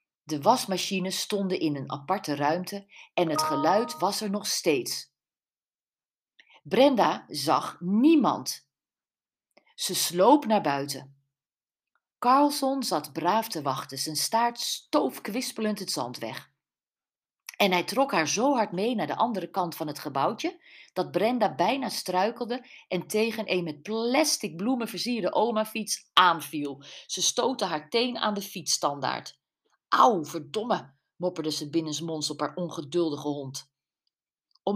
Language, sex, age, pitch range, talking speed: Dutch, female, 40-59, 150-210 Hz, 130 wpm